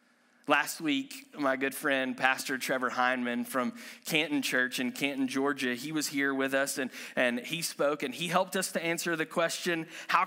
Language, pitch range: English, 145-200 Hz